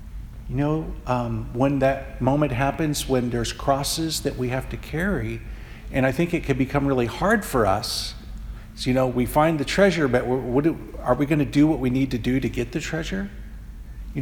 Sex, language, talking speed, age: male, English, 210 wpm, 50-69